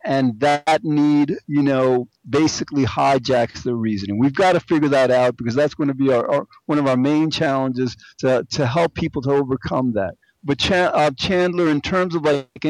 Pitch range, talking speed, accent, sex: 140-170 Hz, 200 wpm, American, male